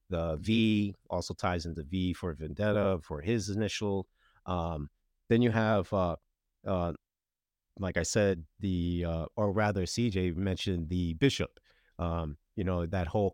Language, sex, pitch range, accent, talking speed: English, male, 85-110 Hz, American, 150 wpm